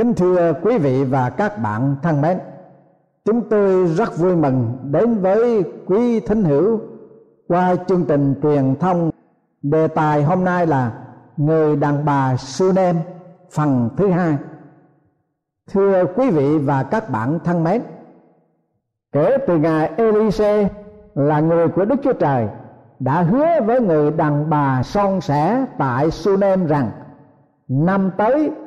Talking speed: 140 wpm